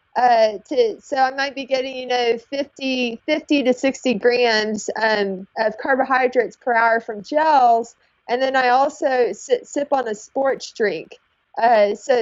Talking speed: 160 wpm